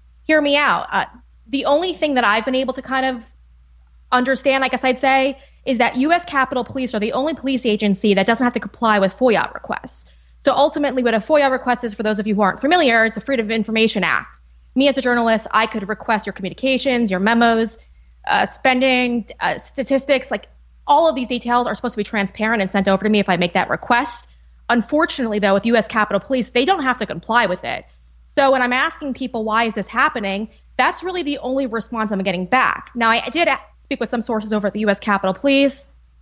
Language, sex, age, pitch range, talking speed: English, female, 20-39, 195-260 Hz, 225 wpm